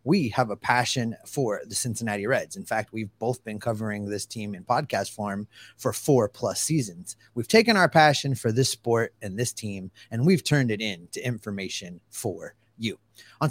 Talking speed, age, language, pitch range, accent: 185 wpm, 30-49, English, 115-180 Hz, American